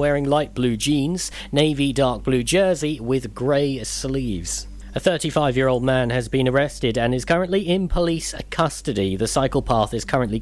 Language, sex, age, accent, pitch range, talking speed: English, male, 40-59, British, 115-145 Hz, 160 wpm